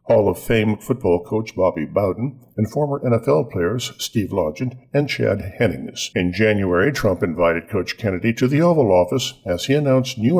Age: 50-69